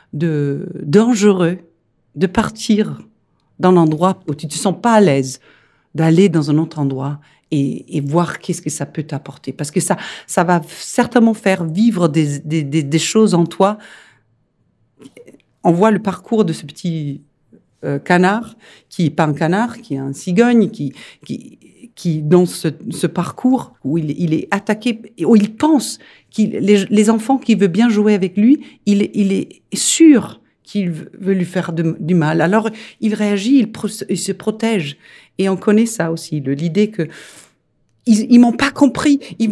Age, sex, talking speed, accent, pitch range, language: 50-69, female, 180 wpm, French, 160-220 Hz, French